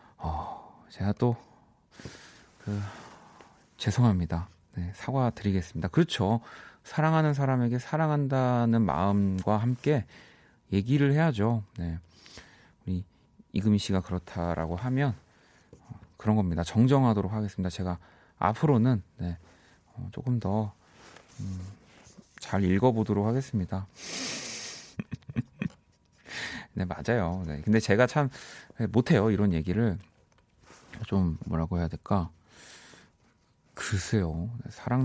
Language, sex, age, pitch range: Korean, male, 30-49, 90-120 Hz